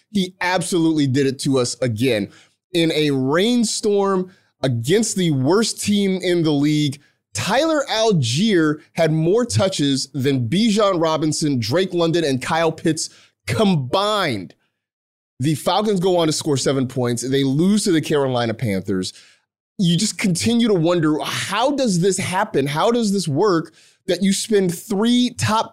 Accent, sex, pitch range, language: American, male, 135-190 Hz, English